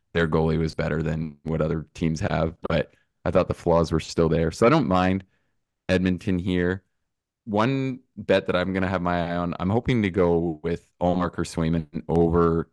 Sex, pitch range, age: male, 80-90 Hz, 20-39